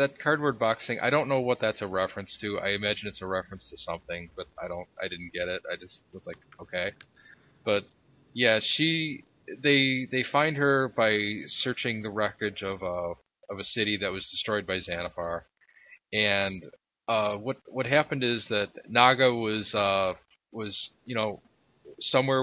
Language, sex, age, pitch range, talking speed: English, male, 20-39, 95-120 Hz, 165 wpm